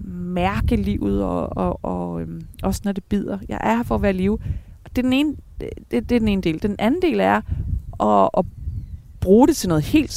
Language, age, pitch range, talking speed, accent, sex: Danish, 30-49, 155-215 Hz, 190 wpm, native, female